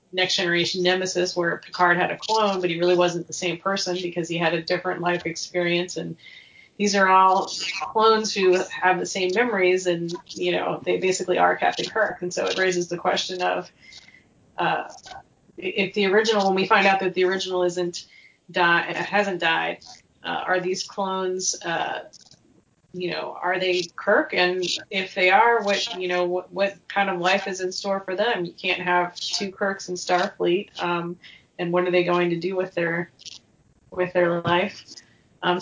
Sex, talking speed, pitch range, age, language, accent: female, 185 wpm, 175-195 Hz, 30-49, English, American